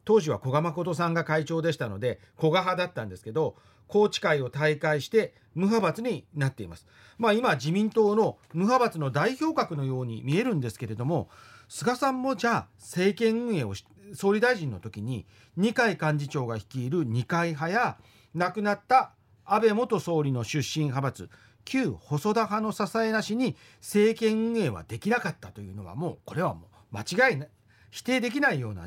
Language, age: Japanese, 40-59